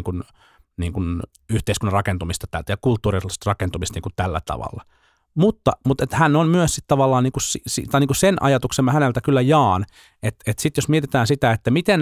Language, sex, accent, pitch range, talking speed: Finnish, male, native, 95-125 Hz, 185 wpm